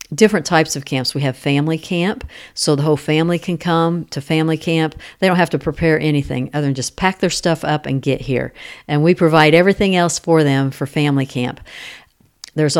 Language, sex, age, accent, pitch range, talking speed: English, female, 50-69, American, 145-175 Hz, 205 wpm